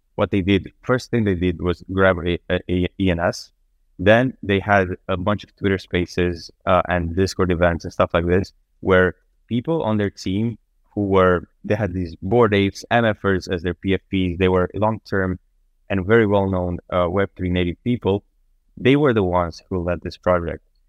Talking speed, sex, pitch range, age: 185 wpm, male, 90-100 Hz, 20-39